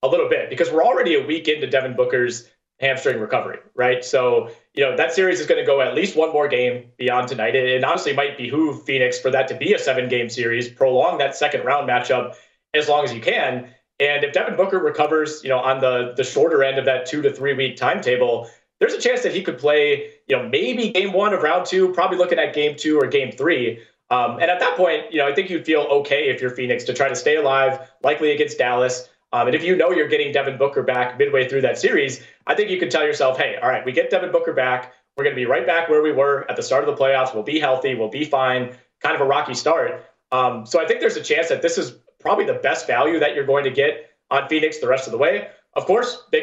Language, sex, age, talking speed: English, male, 30-49, 260 wpm